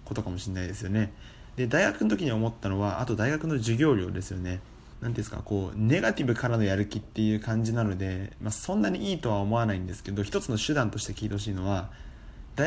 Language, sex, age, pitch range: Japanese, male, 20-39, 100-125 Hz